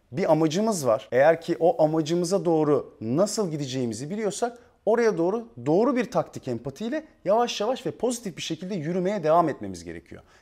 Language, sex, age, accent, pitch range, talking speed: Turkish, male, 40-59, native, 125-205 Hz, 155 wpm